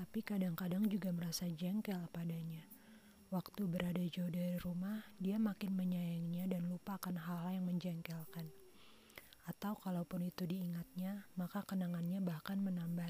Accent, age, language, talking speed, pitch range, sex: native, 30-49, Indonesian, 125 wpm, 170-185 Hz, female